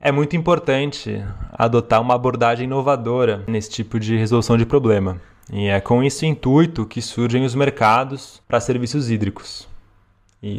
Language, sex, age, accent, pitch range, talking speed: Portuguese, male, 20-39, Brazilian, 110-140 Hz, 145 wpm